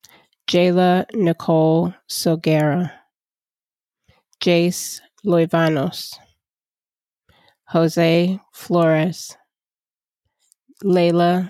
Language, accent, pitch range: English, American, 150-170 Hz